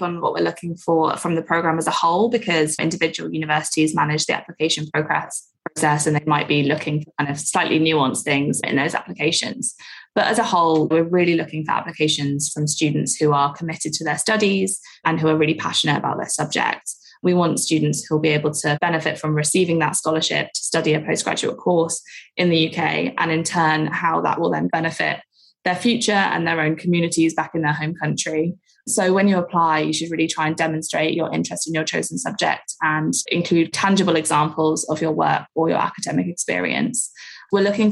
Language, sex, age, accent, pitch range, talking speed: English, female, 20-39, British, 155-175 Hz, 200 wpm